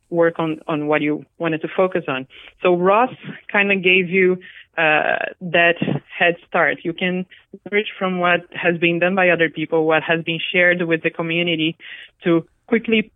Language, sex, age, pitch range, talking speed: English, female, 20-39, 155-180 Hz, 180 wpm